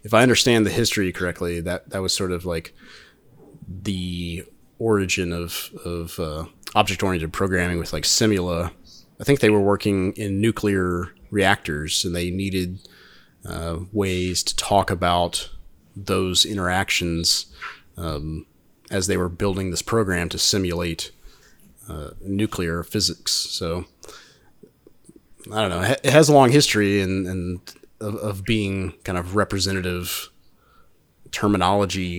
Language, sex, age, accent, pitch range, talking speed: English, male, 30-49, American, 85-100 Hz, 130 wpm